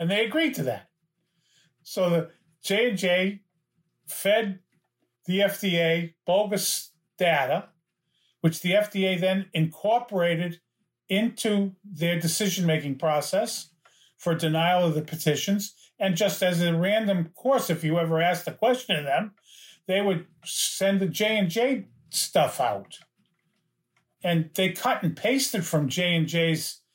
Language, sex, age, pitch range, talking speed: English, male, 40-59, 165-210 Hz, 120 wpm